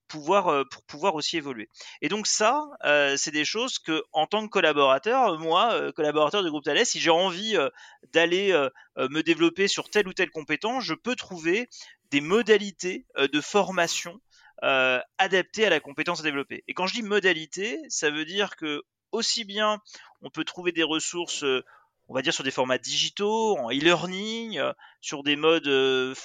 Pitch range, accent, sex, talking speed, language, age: 150-205 Hz, French, male, 185 wpm, French, 30-49